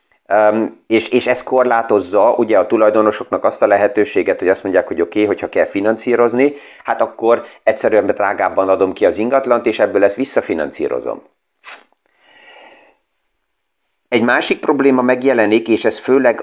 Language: Hungarian